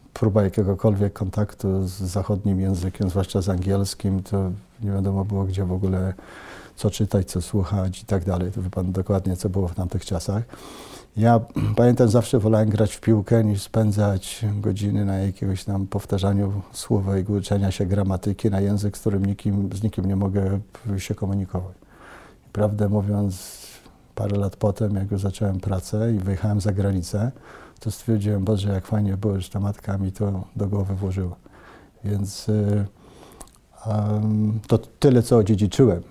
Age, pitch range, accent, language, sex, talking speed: 50-69, 95-105 Hz, native, Polish, male, 160 wpm